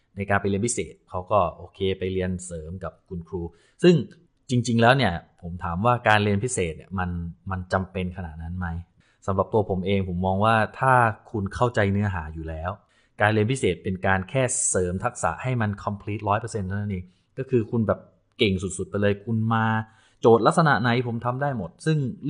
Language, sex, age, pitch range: Thai, male, 20-39, 90-120 Hz